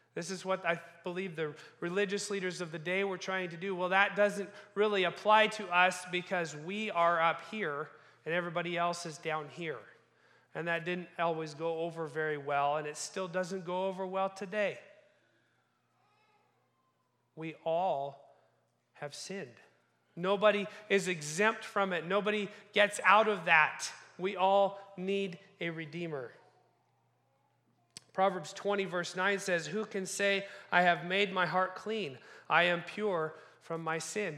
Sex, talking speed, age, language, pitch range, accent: male, 155 wpm, 40-59, English, 155-195 Hz, American